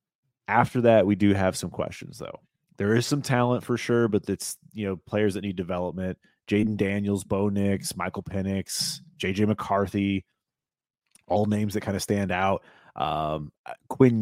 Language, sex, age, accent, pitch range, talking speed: English, male, 30-49, American, 95-115 Hz, 165 wpm